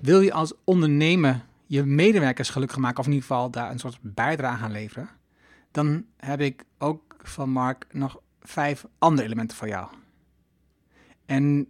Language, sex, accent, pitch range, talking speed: Dutch, male, Dutch, 125-155 Hz, 160 wpm